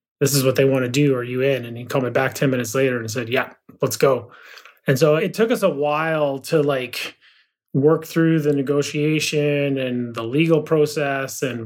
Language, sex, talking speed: English, male, 210 wpm